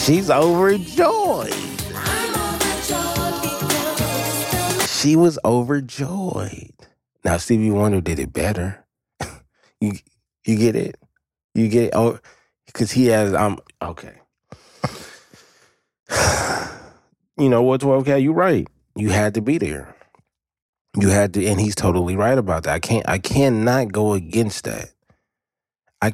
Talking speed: 125 wpm